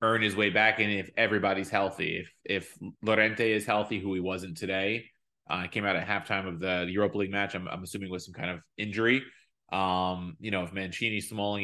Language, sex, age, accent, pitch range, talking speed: English, male, 20-39, American, 95-120 Hz, 210 wpm